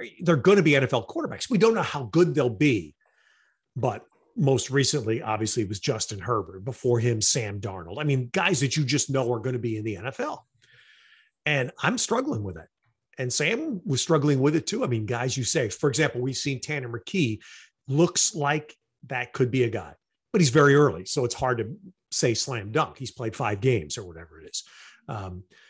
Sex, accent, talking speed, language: male, American, 210 wpm, English